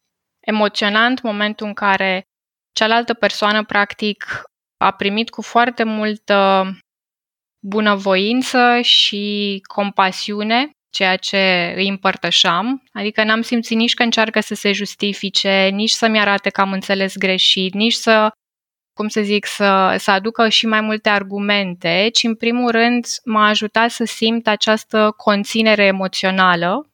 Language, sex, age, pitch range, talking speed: Romanian, female, 20-39, 195-225 Hz, 130 wpm